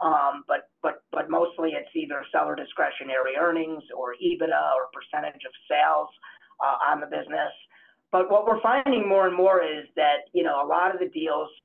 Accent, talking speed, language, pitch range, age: American, 185 wpm, English, 155-205 Hz, 40-59